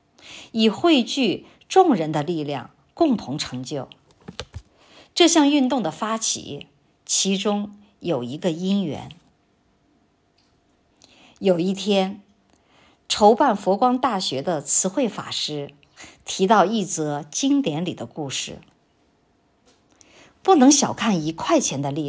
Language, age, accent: Chinese, 50-69, native